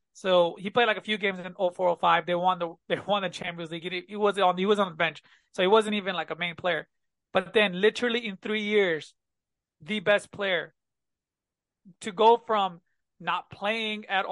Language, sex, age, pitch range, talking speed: English, male, 20-39, 180-210 Hz, 205 wpm